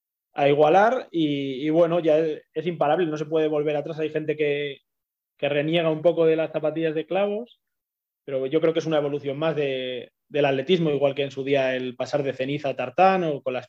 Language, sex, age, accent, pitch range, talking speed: Spanish, male, 20-39, Spanish, 140-160 Hz, 225 wpm